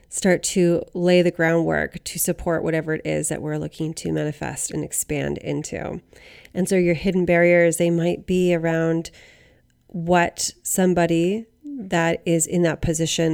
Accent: American